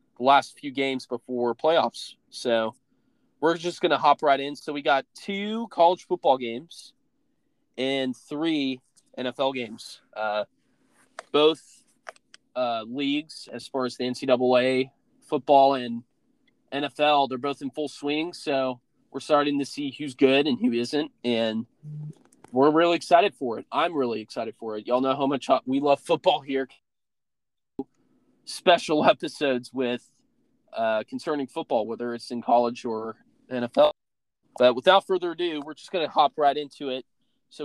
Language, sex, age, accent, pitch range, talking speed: English, male, 20-39, American, 125-170 Hz, 150 wpm